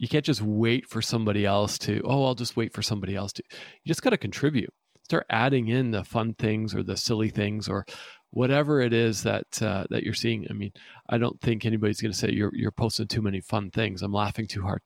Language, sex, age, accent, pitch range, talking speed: English, male, 40-59, American, 105-125 Hz, 240 wpm